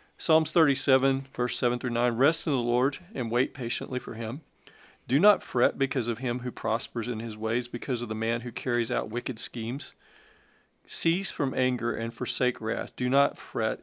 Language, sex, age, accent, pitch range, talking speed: English, male, 40-59, American, 115-130 Hz, 195 wpm